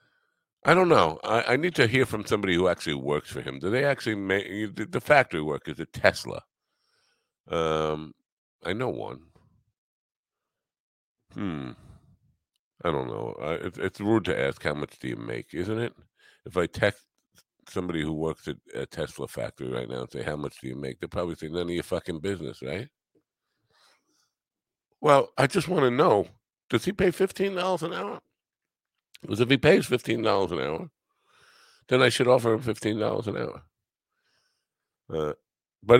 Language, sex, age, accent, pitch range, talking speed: English, male, 50-69, American, 90-135 Hz, 170 wpm